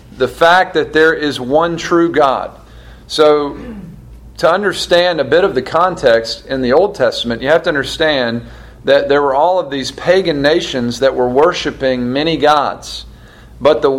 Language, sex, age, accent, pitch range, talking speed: English, male, 40-59, American, 135-175 Hz, 165 wpm